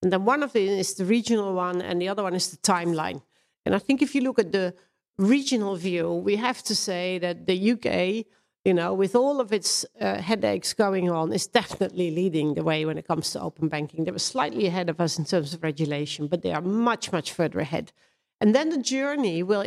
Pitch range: 175-225 Hz